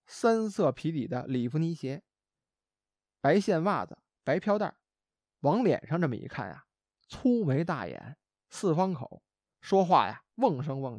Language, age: Chinese, 20-39